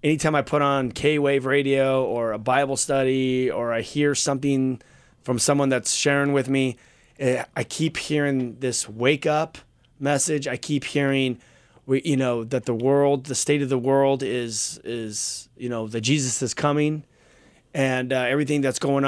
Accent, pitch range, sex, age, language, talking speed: American, 125-145 Hz, male, 30-49, English, 170 wpm